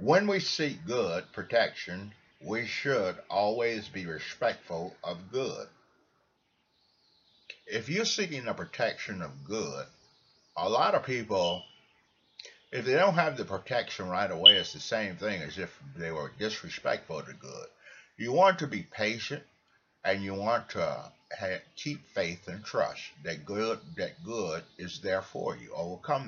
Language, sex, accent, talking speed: English, male, American, 150 wpm